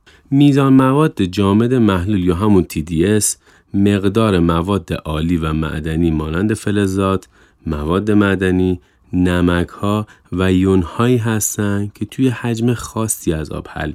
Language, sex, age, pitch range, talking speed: Persian, male, 30-49, 85-105 Hz, 115 wpm